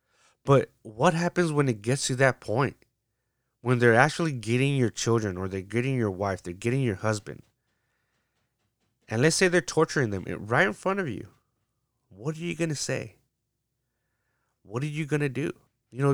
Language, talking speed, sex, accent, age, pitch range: English, 180 wpm, male, American, 30-49, 110-135 Hz